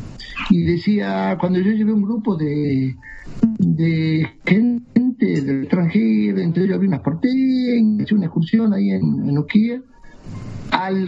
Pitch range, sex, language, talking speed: 125-180 Hz, male, Spanish, 135 wpm